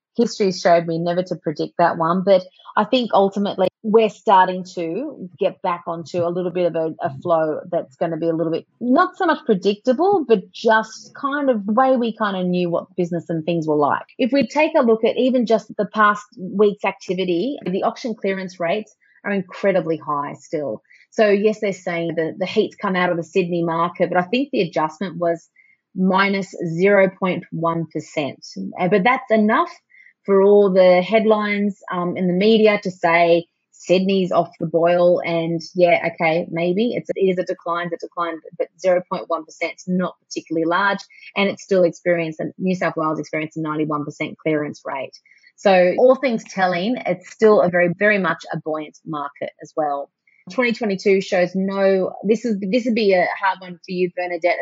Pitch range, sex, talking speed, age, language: 170-210 Hz, female, 185 wpm, 30-49, English